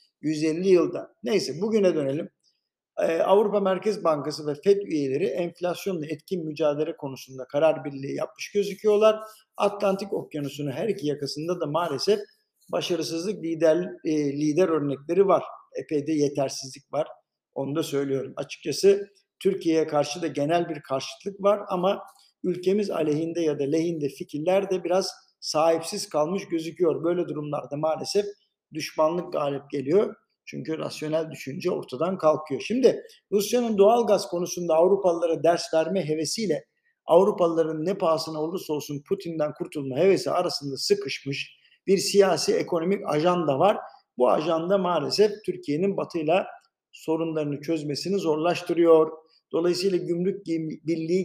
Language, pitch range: Turkish, 155-195 Hz